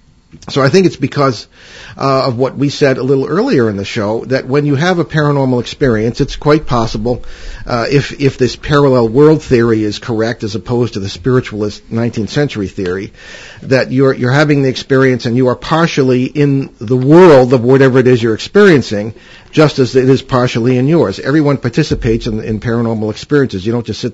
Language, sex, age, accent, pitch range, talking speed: English, male, 50-69, American, 115-140 Hz, 195 wpm